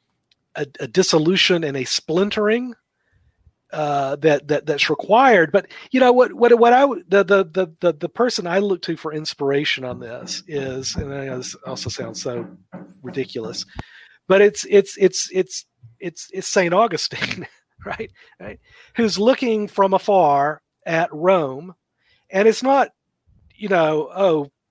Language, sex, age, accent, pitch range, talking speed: English, male, 40-59, American, 150-205 Hz, 150 wpm